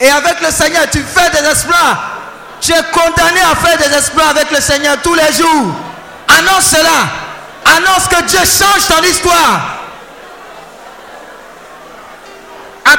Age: 50-69